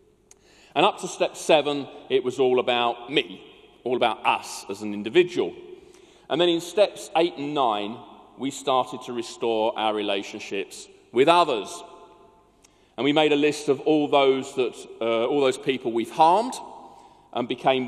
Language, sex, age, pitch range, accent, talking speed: English, male, 40-59, 120-170 Hz, British, 160 wpm